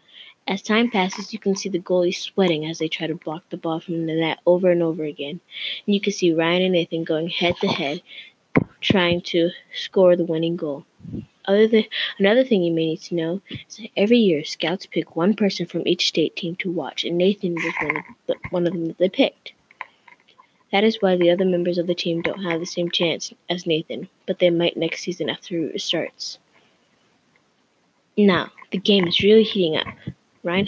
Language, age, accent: English, 20-39, American